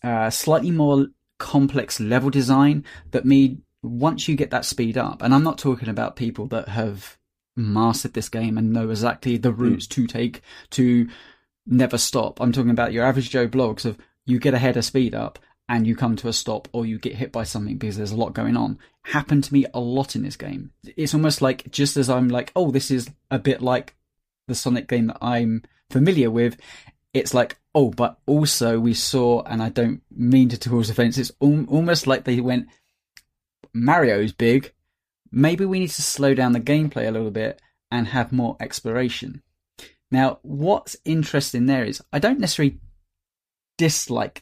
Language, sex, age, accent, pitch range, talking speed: English, male, 20-39, British, 115-135 Hz, 195 wpm